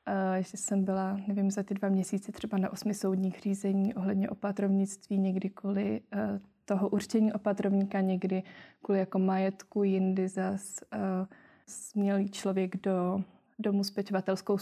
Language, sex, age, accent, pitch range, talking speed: Czech, female, 20-39, native, 195-210 Hz, 135 wpm